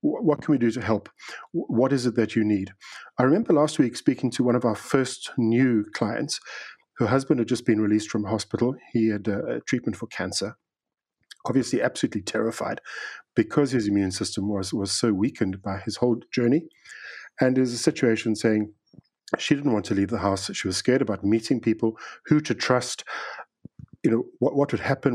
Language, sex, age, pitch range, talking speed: English, male, 50-69, 105-125 Hz, 190 wpm